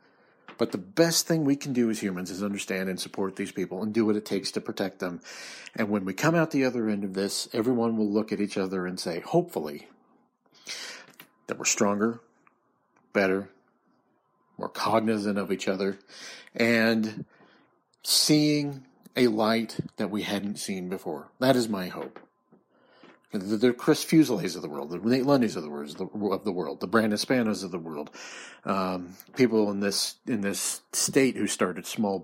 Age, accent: 40-59, American